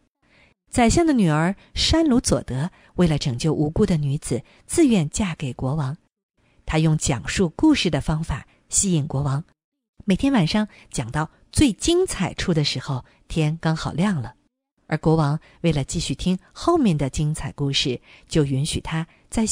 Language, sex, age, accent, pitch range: Chinese, female, 50-69, native, 145-215 Hz